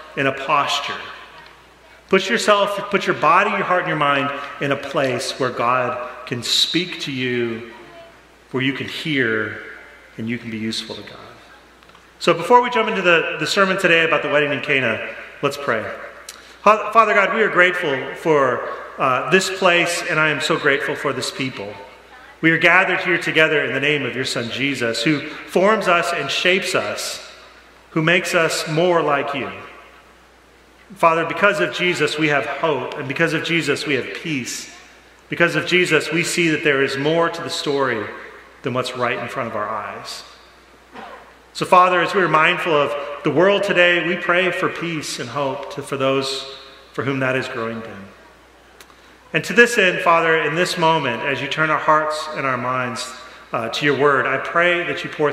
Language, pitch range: English, 135-175 Hz